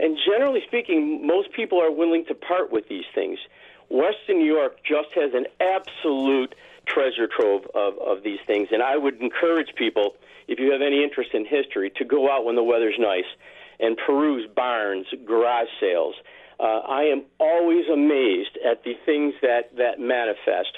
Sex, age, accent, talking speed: male, 50-69, American, 175 wpm